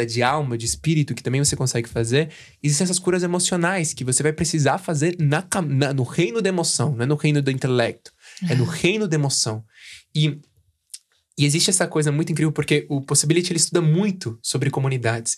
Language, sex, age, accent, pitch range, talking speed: Portuguese, male, 20-39, Brazilian, 130-165 Hz, 195 wpm